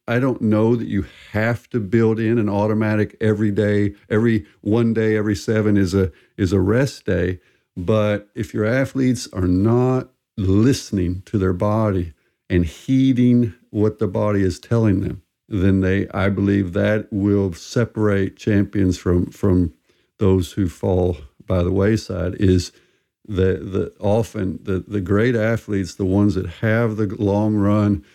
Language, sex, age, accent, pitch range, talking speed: English, male, 60-79, American, 95-110 Hz, 155 wpm